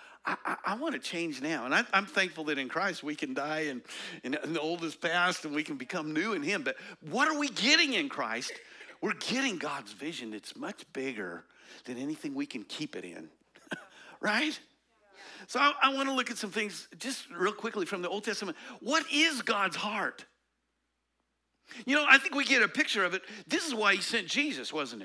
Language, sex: English, male